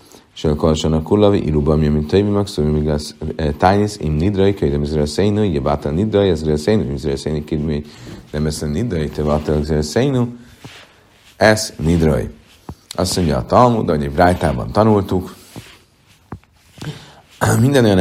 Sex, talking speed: male, 145 wpm